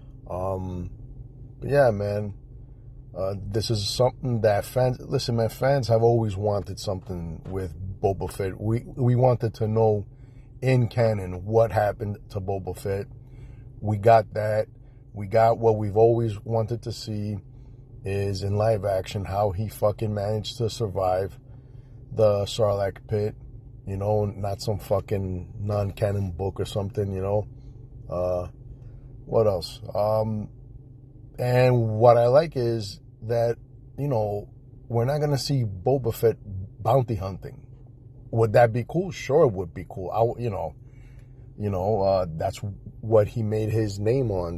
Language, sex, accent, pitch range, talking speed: English, male, American, 100-125 Hz, 145 wpm